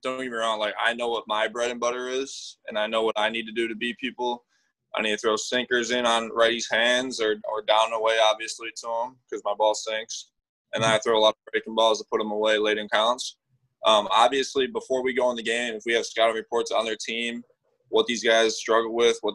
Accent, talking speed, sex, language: American, 255 wpm, male, English